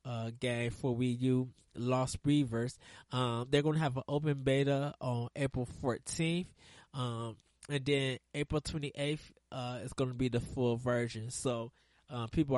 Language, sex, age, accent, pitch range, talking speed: English, male, 20-39, American, 125-145 Hz, 160 wpm